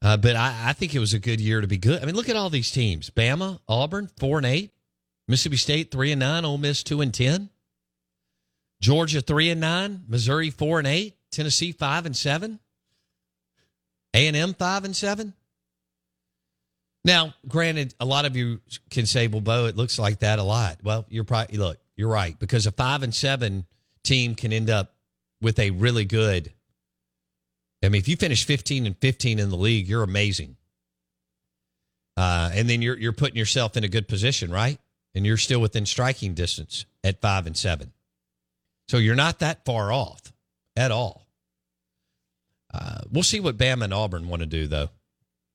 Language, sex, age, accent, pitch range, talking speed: English, male, 50-69, American, 90-135 Hz, 185 wpm